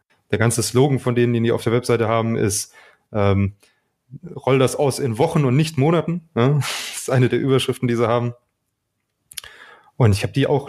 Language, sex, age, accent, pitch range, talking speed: German, male, 20-39, German, 115-135 Hz, 195 wpm